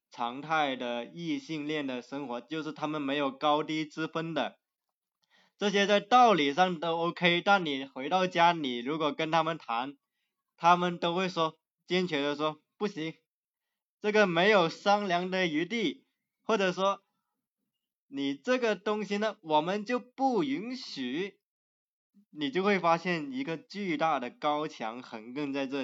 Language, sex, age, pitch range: Chinese, male, 20-39, 140-190 Hz